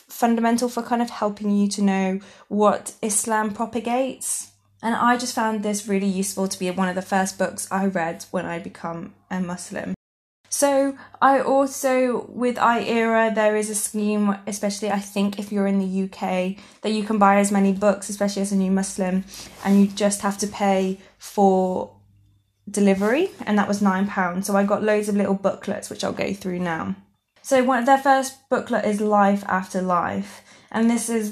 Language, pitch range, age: English, 195-220 Hz, 20-39